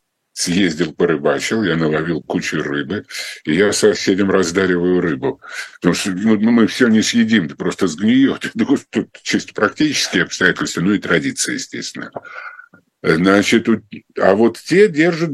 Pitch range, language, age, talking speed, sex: 100-135 Hz, Russian, 50-69, 125 wpm, male